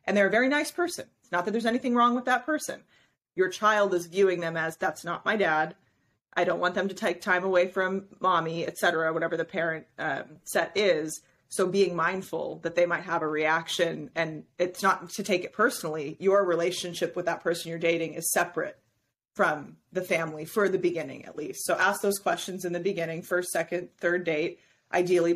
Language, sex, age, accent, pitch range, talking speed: English, female, 30-49, American, 165-200 Hz, 210 wpm